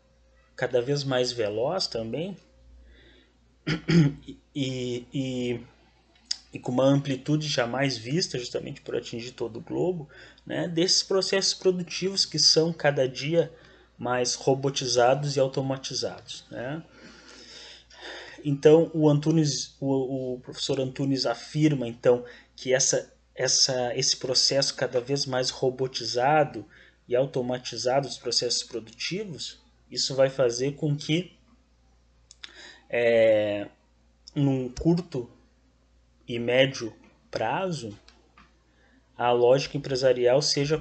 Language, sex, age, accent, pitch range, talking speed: Portuguese, male, 20-39, Brazilian, 120-145 Hz, 100 wpm